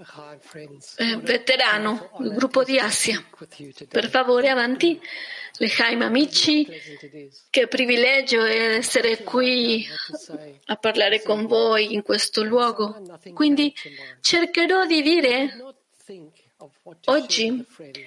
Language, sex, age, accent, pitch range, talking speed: Italian, female, 30-49, native, 210-275 Hz, 95 wpm